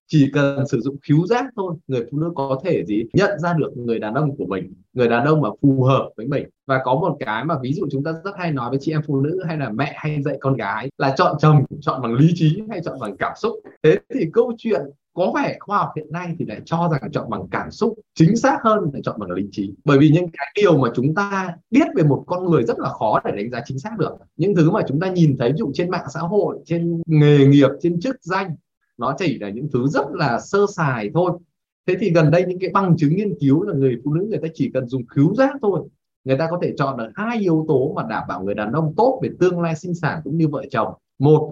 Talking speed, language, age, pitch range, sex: 275 wpm, Vietnamese, 20-39, 135-180 Hz, male